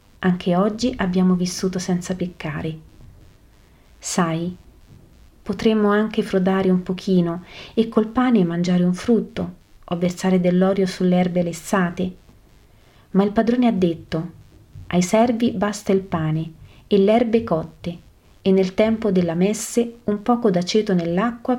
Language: Italian